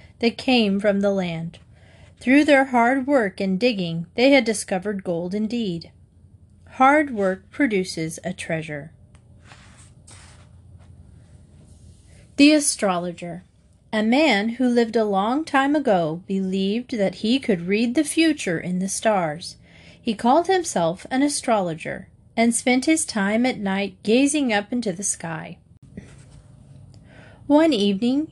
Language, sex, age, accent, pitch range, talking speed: English, female, 30-49, American, 175-270 Hz, 125 wpm